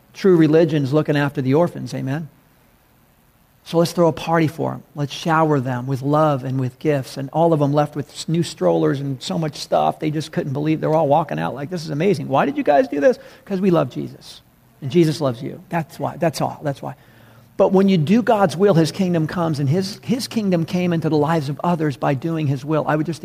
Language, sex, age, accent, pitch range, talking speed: English, male, 50-69, American, 140-165 Hz, 235 wpm